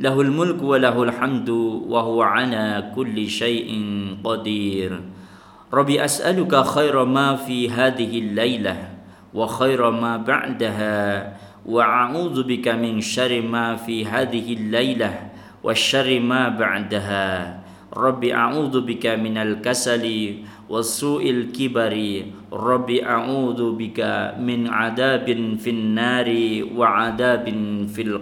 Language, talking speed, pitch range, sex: Indonesian, 105 wpm, 105-125 Hz, male